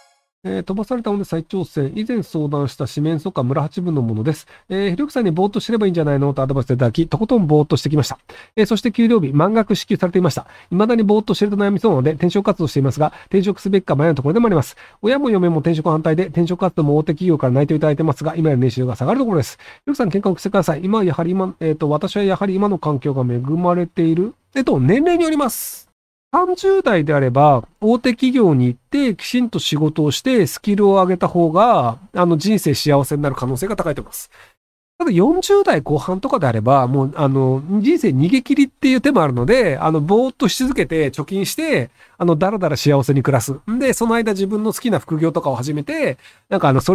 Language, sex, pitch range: Japanese, male, 140-205 Hz